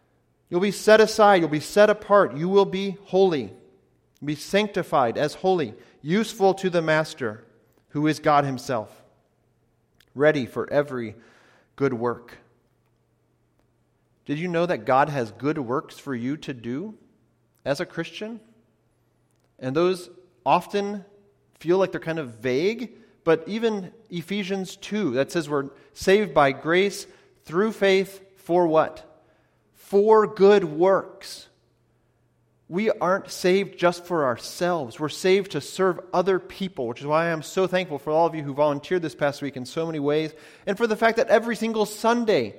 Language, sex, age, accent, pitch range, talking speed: English, male, 40-59, American, 125-190 Hz, 155 wpm